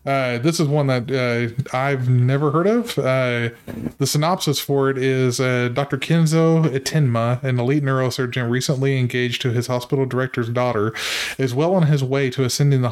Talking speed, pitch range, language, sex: 175 wpm, 125-150 Hz, English, male